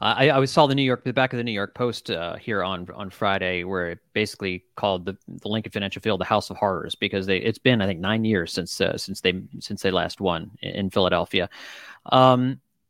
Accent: American